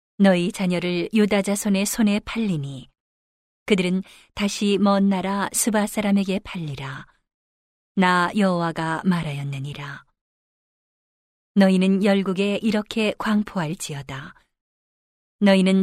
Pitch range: 165-200 Hz